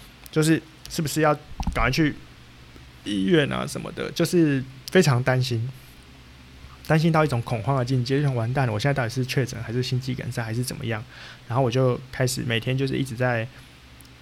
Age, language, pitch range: 20-39, Chinese, 120-145 Hz